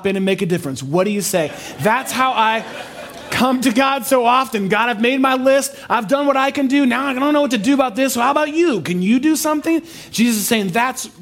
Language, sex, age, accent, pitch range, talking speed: English, male, 30-49, American, 120-170 Hz, 260 wpm